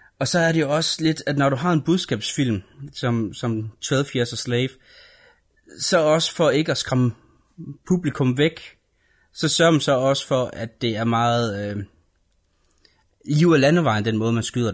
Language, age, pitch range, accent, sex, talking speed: Danish, 30-49, 115-140 Hz, native, male, 175 wpm